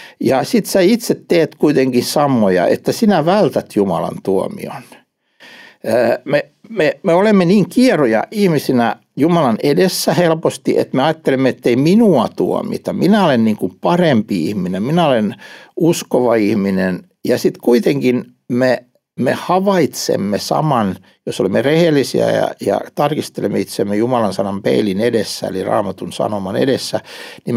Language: Finnish